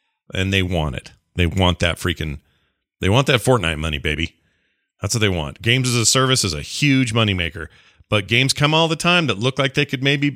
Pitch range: 90-125 Hz